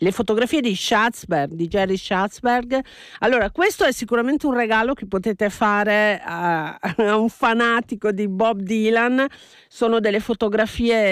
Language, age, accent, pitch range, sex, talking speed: Italian, 50-69, native, 200-255 Hz, female, 140 wpm